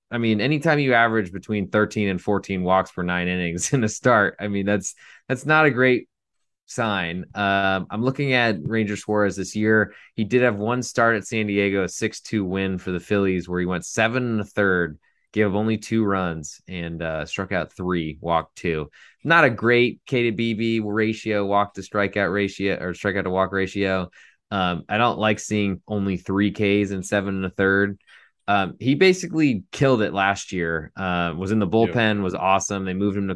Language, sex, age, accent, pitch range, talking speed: English, male, 20-39, American, 90-110 Hz, 190 wpm